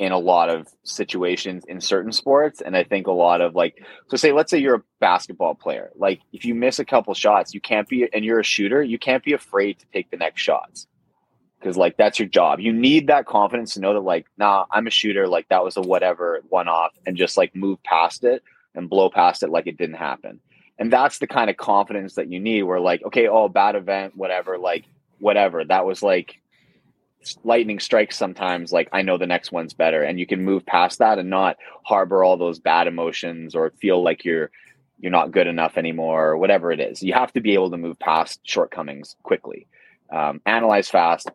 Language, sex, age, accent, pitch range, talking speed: English, male, 30-49, American, 95-125 Hz, 225 wpm